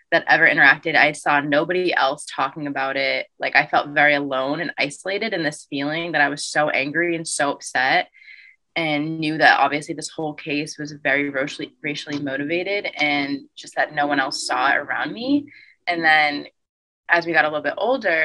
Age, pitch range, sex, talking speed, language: 20-39, 145-165 Hz, female, 195 wpm, English